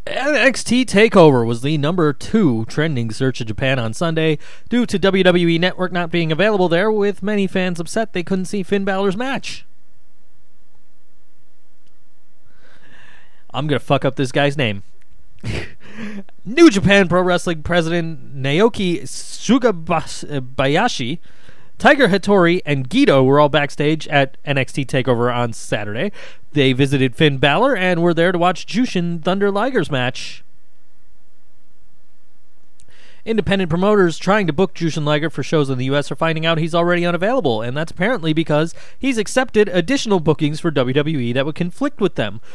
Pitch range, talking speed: 140-195 Hz, 145 wpm